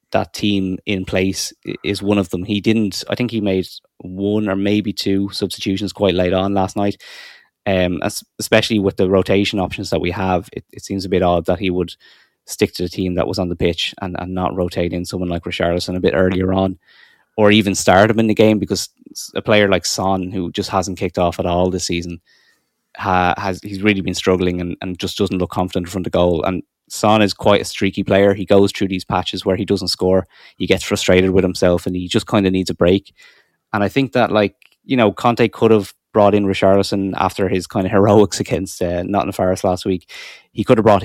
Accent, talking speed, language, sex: Irish, 230 wpm, English, male